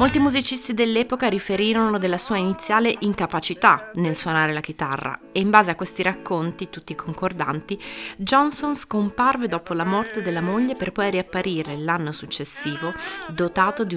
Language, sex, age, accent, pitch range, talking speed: Italian, female, 30-49, native, 170-225 Hz, 145 wpm